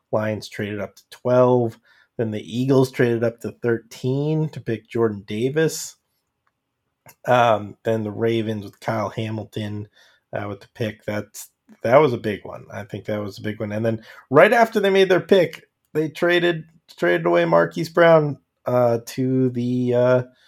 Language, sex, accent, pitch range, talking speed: English, male, American, 110-130 Hz, 170 wpm